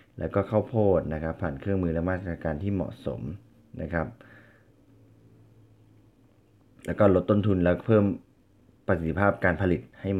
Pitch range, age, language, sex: 85-110 Hz, 20-39, Thai, male